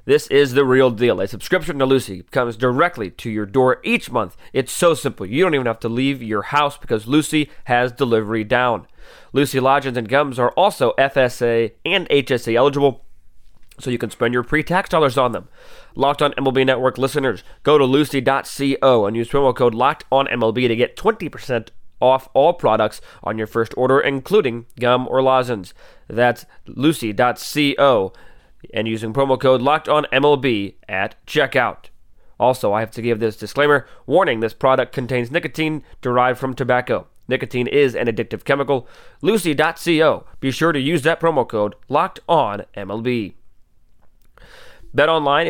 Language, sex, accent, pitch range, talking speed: English, male, American, 120-150 Hz, 155 wpm